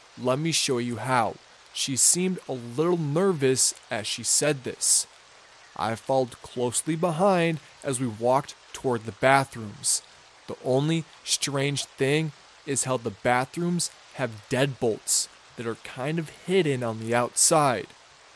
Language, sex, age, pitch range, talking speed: English, male, 20-39, 120-155 Hz, 135 wpm